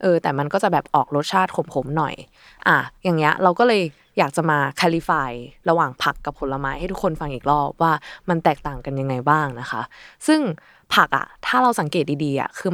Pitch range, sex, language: 140-185 Hz, female, Thai